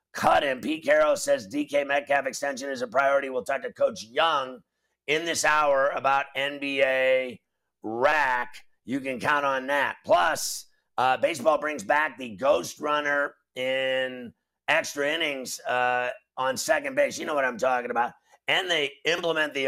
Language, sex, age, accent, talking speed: English, male, 50-69, American, 160 wpm